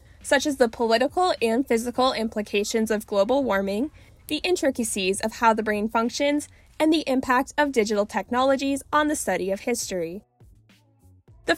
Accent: American